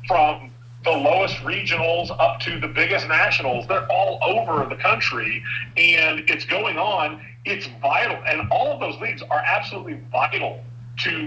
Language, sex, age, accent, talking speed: English, male, 40-59, American, 155 wpm